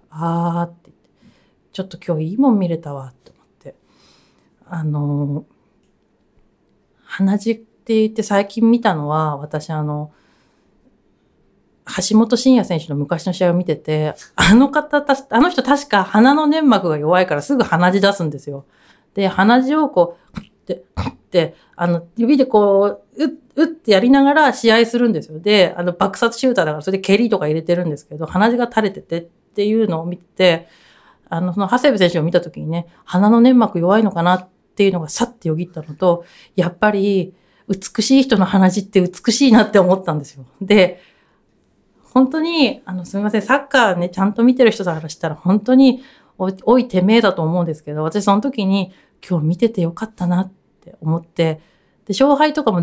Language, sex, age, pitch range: Japanese, female, 40-59, 170-230 Hz